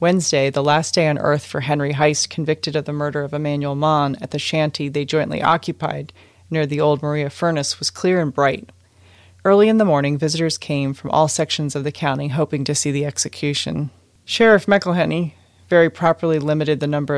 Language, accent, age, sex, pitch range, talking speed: English, American, 30-49, female, 140-160 Hz, 190 wpm